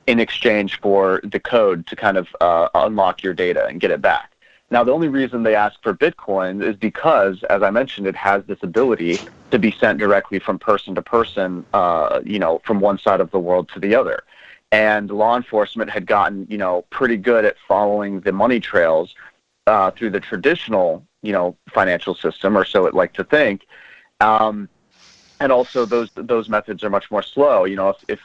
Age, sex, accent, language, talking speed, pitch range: 30-49, male, American, English, 200 wpm, 95-110 Hz